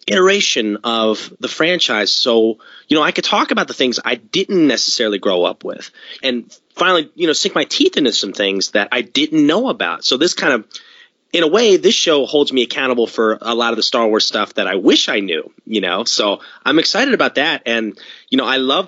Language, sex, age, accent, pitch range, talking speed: English, male, 30-49, American, 110-145 Hz, 225 wpm